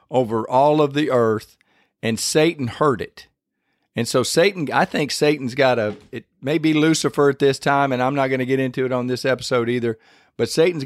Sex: male